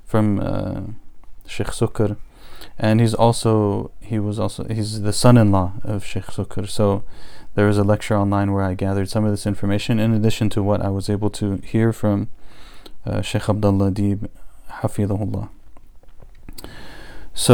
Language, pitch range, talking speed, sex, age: English, 100-115 Hz, 160 wpm, male, 20-39